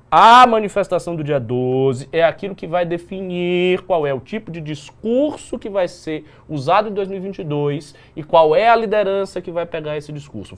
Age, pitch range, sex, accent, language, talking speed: 20-39, 155-215 Hz, male, Brazilian, Portuguese, 180 wpm